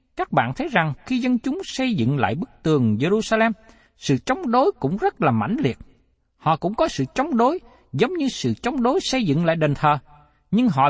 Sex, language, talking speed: male, Vietnamese, 215 wpm